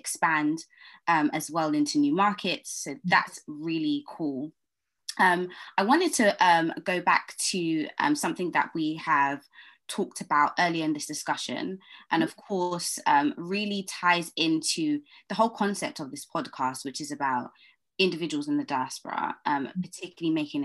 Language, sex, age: English, female, 20-39